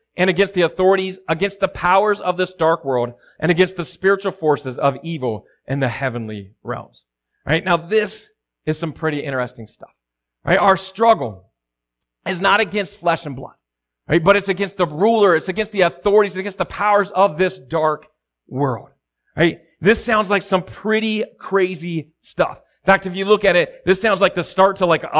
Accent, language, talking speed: American, English, 185 wpm